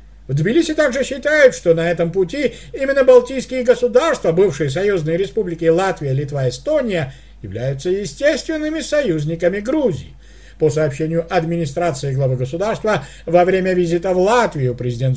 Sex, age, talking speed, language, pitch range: male, 50-69, 125 wpm, Russian, 155-215 Hz